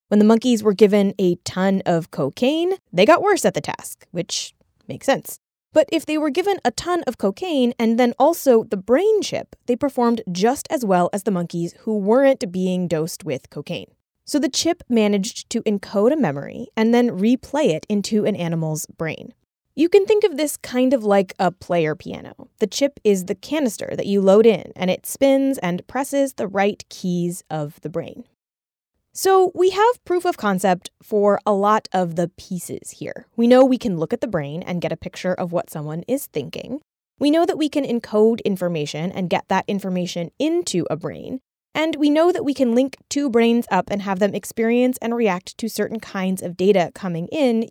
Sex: female